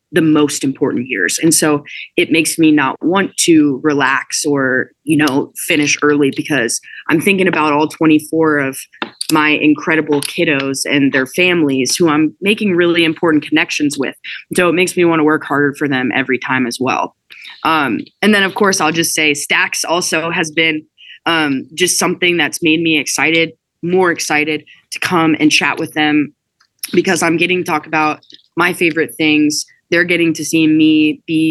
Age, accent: 20-39, American